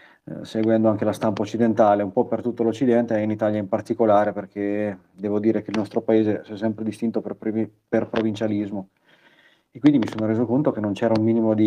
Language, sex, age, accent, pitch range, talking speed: Italian, male, 30-49, native, 105-115 Hz, 215 wpm